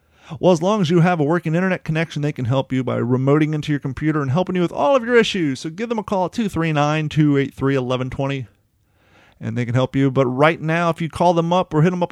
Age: 30-49